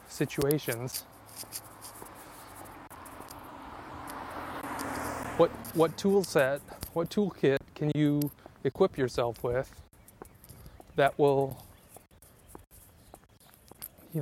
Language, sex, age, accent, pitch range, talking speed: English, male, 20-39, American, 125-145 Hz, 65 wpm